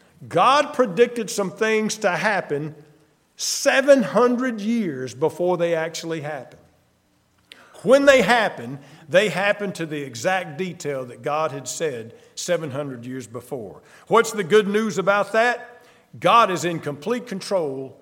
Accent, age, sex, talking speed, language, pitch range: American, 50-69, male, 130 wpm, English, 155-225 Hz